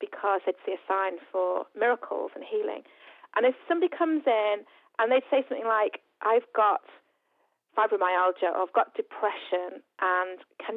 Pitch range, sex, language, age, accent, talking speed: 205-335 Hz, female, English, 40-59, British, 155 wpm